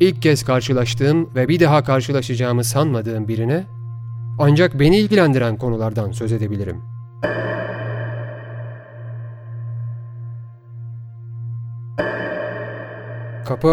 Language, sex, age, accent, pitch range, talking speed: Turkish, male, 40-59, native, 105-145 Hz, 70 wpm